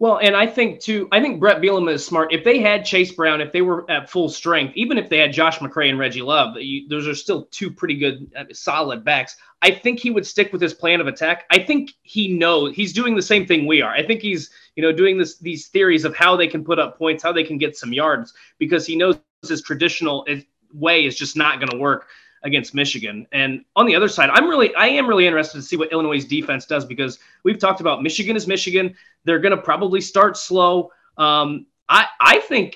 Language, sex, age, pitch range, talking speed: English, male, 20-39, 145-180 Hz, 240 wpm